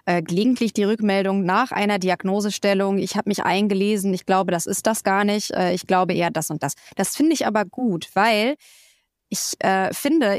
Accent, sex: German, female